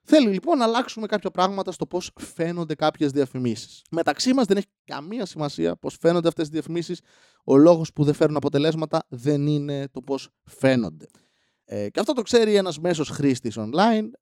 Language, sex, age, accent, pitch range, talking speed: Greek, male, 20-39, native, 135-195 Hz, 175 wpm